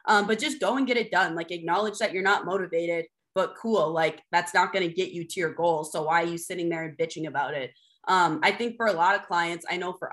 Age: 20-39